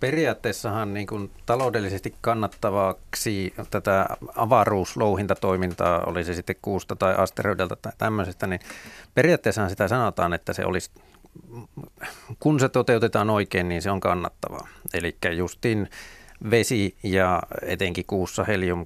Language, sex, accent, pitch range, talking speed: Finnish, male, native, 95-110 Hz, 120 wpm